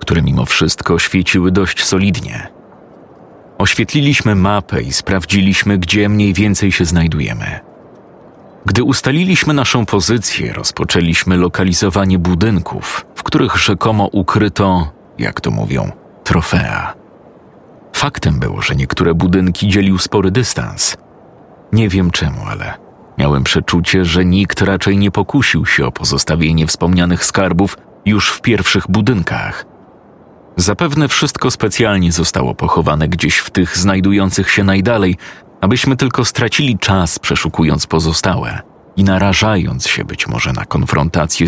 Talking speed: 120 wpm